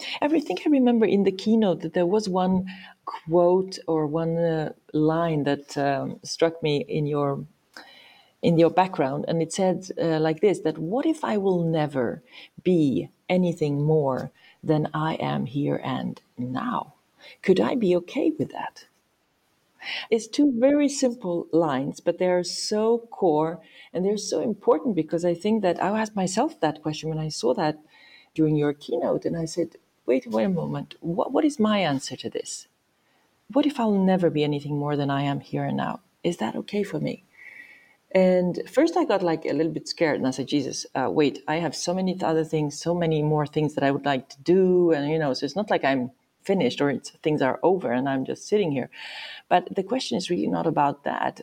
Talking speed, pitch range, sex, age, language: 200 wpm, 150-190 Hz, female, 40-59, English